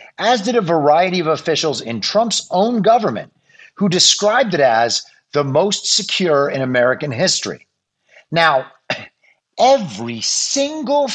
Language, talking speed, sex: English, 125 wpm, male